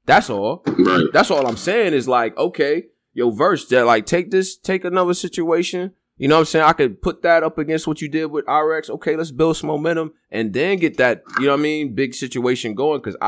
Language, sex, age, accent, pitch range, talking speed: English, male, 20-39, American, 100-165 Hz, 235 wpm